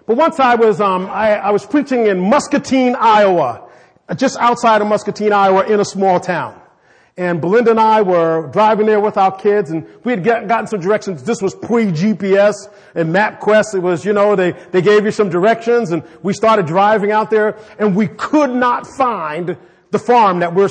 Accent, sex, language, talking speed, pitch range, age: American, male, English, 195 wpm, 175-225 Hz, 40-59